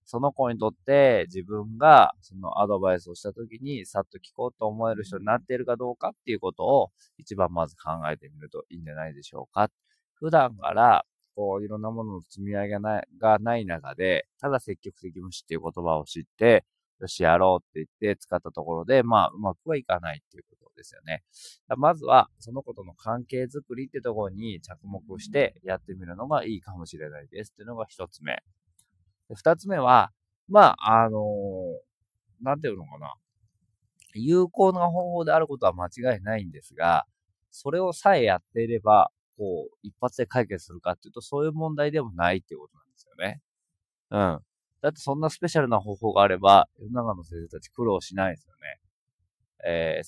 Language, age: Japanese, 20-39